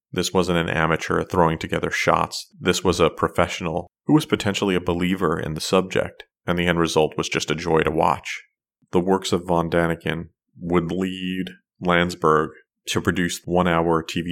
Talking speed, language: 170 wpm, English